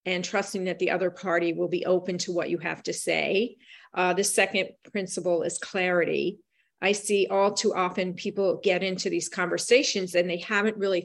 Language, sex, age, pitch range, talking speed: English, female, 40-59, 180-210 Hz, 190 wpm